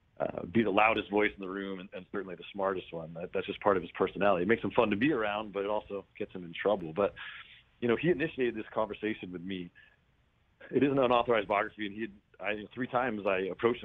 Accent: American